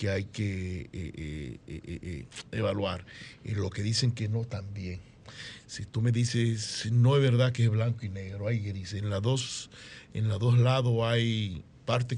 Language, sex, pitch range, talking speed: Spanish, male, 105-125 Hz, 165 wpm